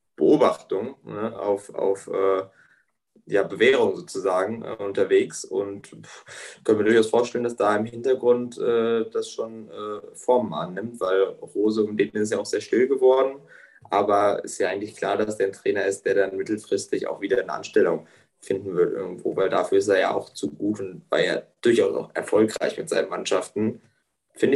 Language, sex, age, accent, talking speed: German, male, 20-39, German, 185 wpm